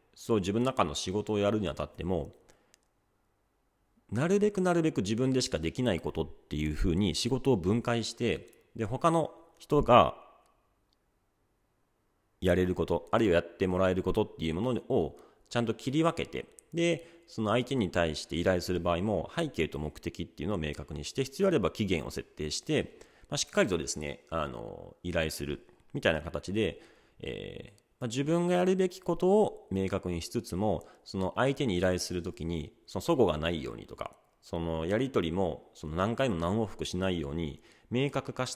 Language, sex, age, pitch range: Japanese, male, 40-59, 85-130 Hz